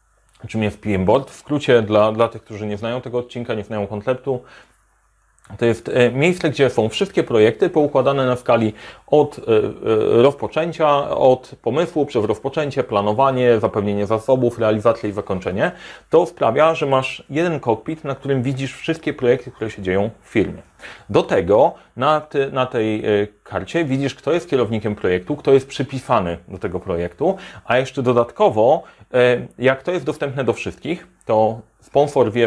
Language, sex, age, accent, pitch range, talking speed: Polish, male, 30-49, native, 110-145 Hz, 155 wpm